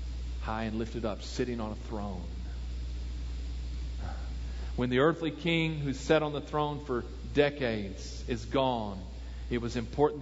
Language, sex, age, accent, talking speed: English, male, 40-59, American, 140 wpm